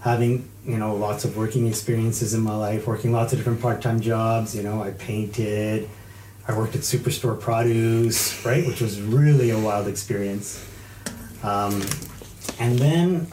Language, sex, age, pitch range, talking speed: English, male, 30-49, 105-130 Hz, 160 wpm